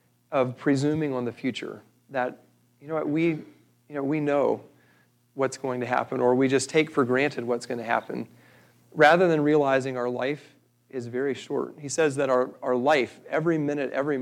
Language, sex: English, male